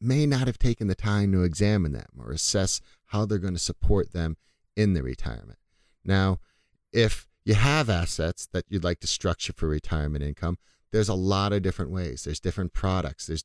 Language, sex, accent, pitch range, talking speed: English, male, American, 85-105 Hz, 190 wpm